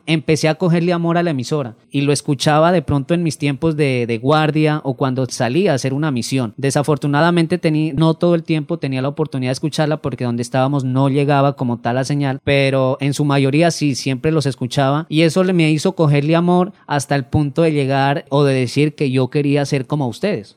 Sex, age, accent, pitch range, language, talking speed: male, 30-49, Colombian, 130-155 Hz, Spanish, 215 wpm